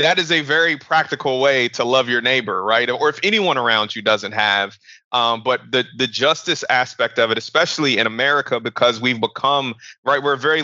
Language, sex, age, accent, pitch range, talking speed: English, male, 30-49, American, 120-145 Hz, 205 wpm